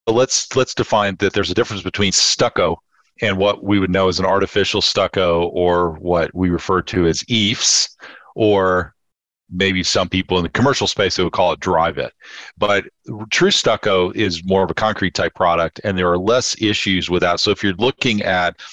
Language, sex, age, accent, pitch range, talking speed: English, male, 40-59, American, 85-105 Hz, 200 wpm